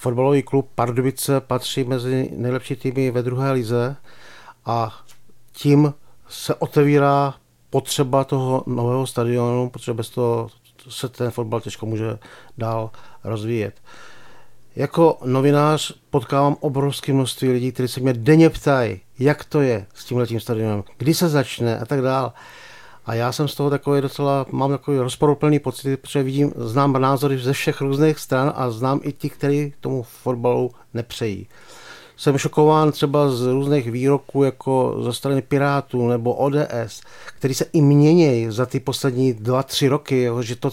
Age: 50-69